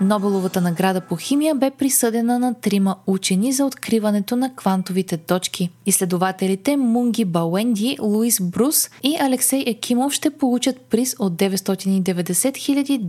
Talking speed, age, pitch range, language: 130 wpm, 20-39, 190-255 Hz, Bulgarian